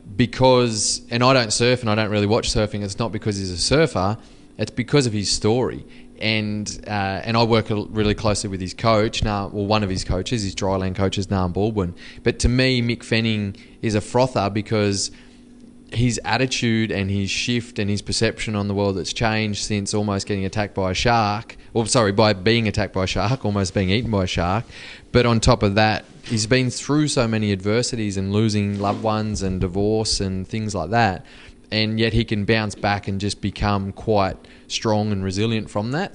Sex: male